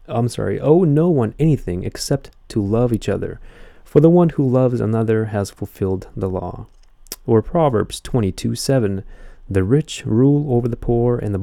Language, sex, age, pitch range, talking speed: English, male, 30-49, 105-145 Hz, 175 wpm